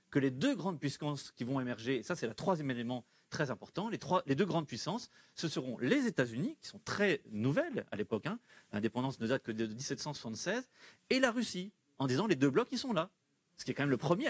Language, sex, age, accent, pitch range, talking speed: French, male, 40-59, French, 135-185 Hz, 240 wpm